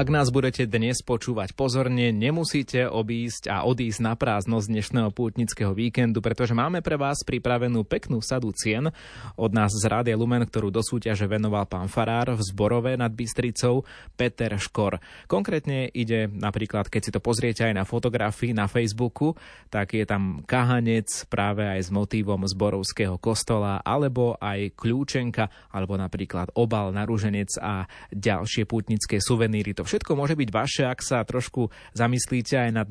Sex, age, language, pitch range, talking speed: male, 20-39, Slovak, 105-125 Hz, 155 wpm